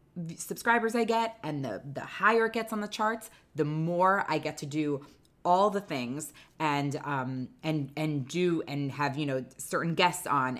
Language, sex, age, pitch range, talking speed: English, female, 20-39, 145-180 Hz, 185 wpm